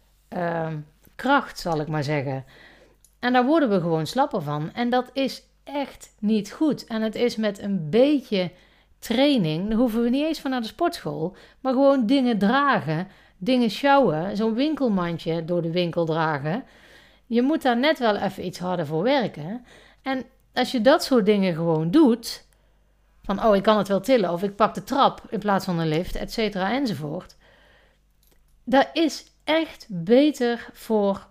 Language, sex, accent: Dutch, female, Dutch